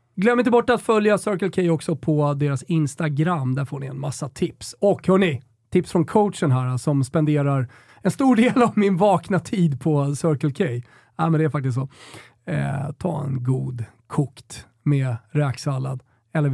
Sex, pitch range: male, 135-195 Hz